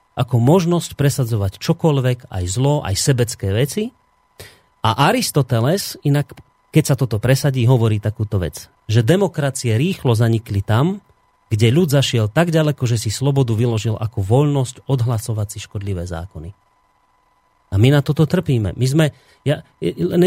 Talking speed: 140 wpm